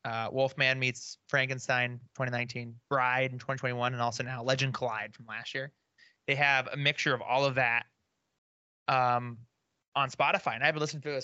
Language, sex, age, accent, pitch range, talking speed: English, male, 20-39, American, 120-140 Hz, 170 wpm